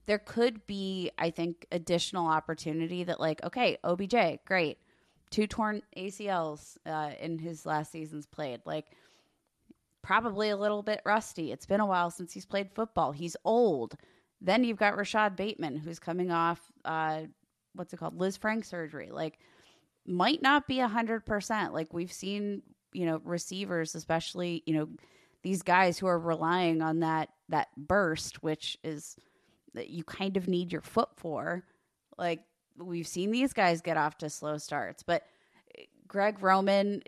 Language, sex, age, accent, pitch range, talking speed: English, female, 20-39, American, 160-200 Hz, 160 wpm